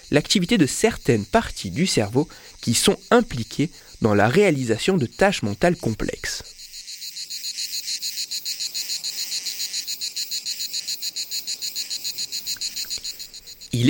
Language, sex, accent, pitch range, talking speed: French, male, French, 115-180 Hz, 75 wpm